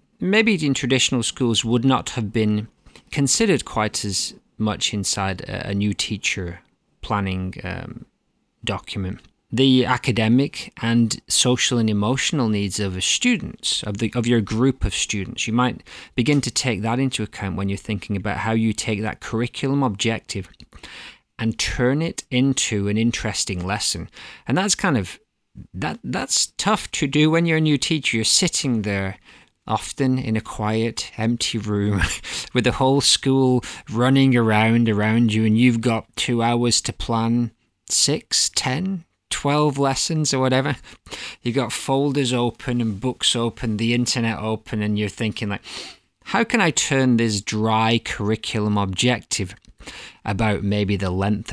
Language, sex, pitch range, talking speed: English, male, 105-130 Hz, 155 wpm